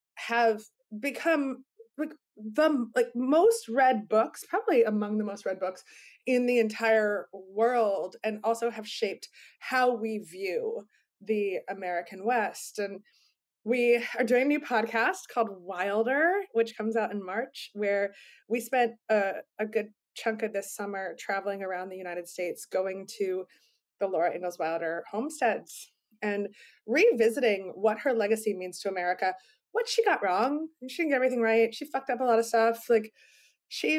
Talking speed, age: 160 wpm, 20-39